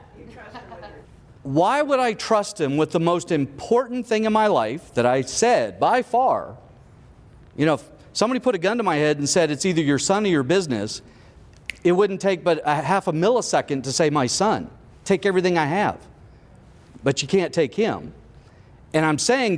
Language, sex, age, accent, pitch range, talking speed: English, male, 40-59, American, 145-210 Hz, 185 wpm